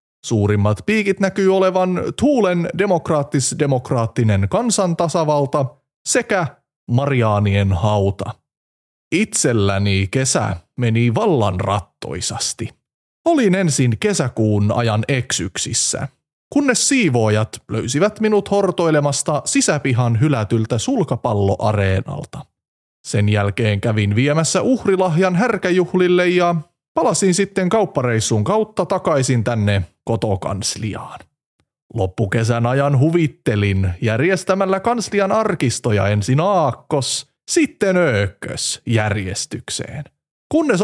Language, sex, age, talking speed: Finnish, male, 30-49, 80 wpm